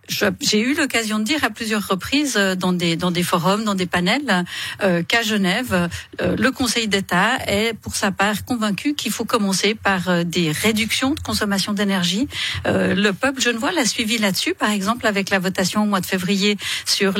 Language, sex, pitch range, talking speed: French, female, 180-235 Hz, 190 wpm